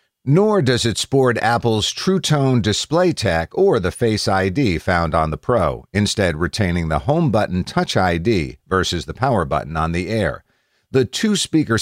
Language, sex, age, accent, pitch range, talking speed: English, male, 50-69, American, 90-120 Hz, 160 wpm